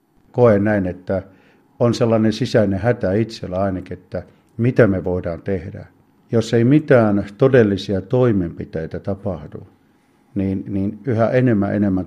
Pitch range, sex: 90-115 Hz, male